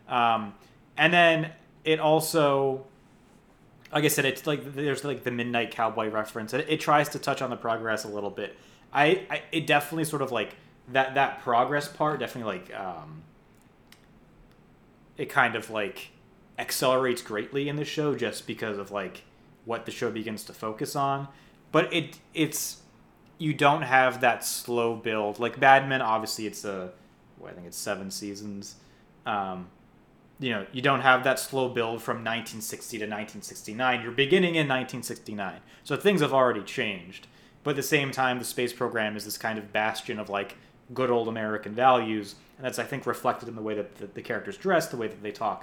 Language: English